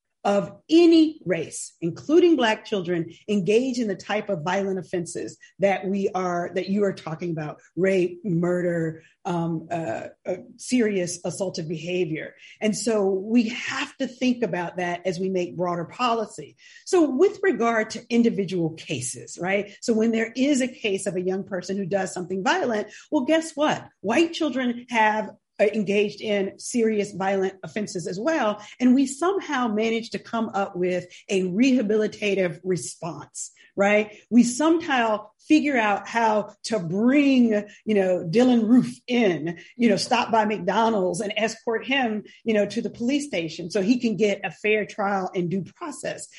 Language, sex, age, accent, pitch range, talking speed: English, female, 40-59, American, 190-240 Hz, 160 wpm